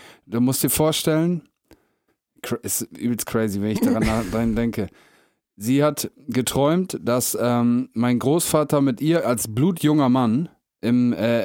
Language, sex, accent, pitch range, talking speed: German, male, German, 120-150 Hz, 135 wpm